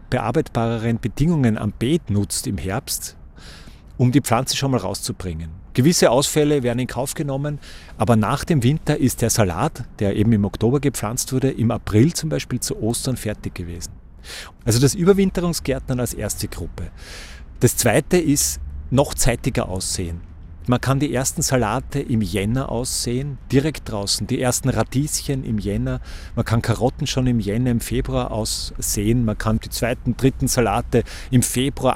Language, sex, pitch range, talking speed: German, male, 105-135 Hz, 160 wpm